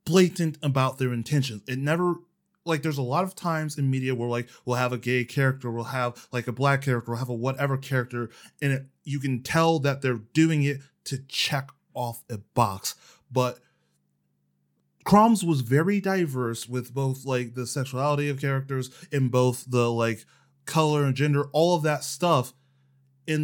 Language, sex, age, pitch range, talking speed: English, male, 20-39, 130-175 Hz, 175 wpm